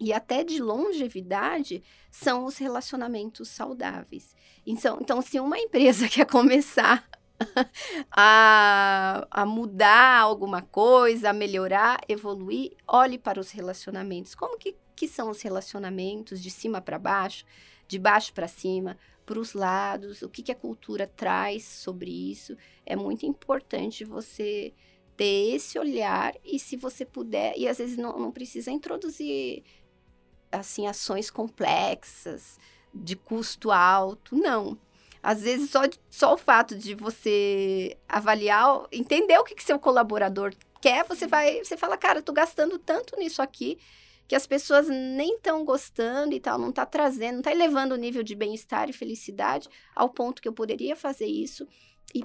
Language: Portuguese